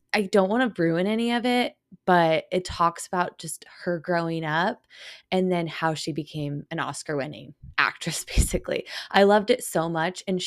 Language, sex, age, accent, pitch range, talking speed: English, female, 20-39, American, 165-215 Hz, 185 wpm